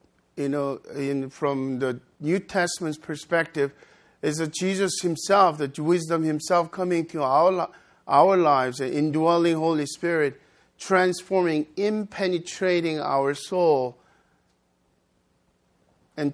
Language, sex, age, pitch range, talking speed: English, male, 50-69, 130-175 Hz, 105 wpm